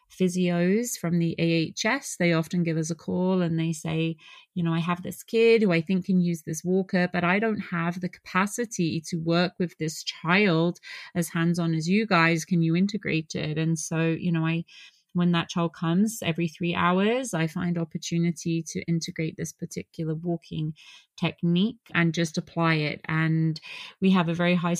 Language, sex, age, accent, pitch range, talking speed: English, female, 30-49, British, 160-185 Hz, 190 wpm